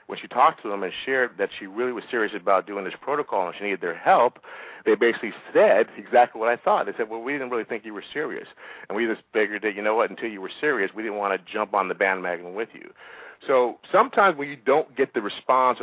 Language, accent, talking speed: English, American, 260 wpm